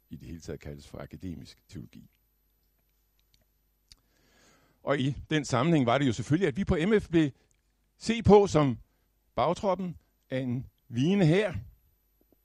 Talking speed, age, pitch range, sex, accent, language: 135 wpm, 60-79, 105-160 Hz, male, native, Danish